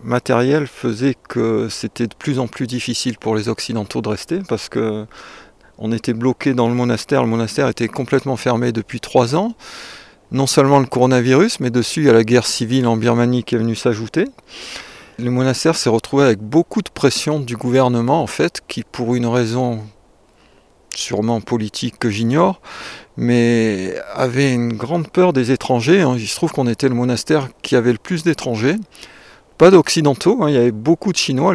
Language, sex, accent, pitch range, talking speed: French, male, French, 120-140 Hz, 185 wpm